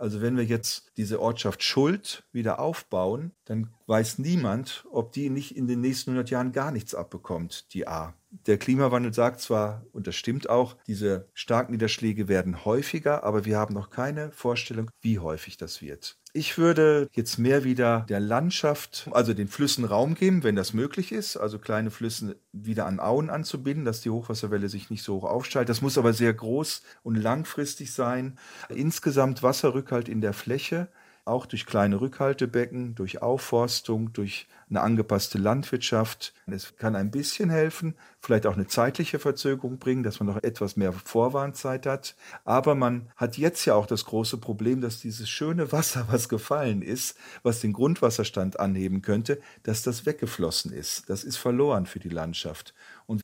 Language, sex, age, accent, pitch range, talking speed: German, male, 40-59, German, 105-135 Hz, 170 wpm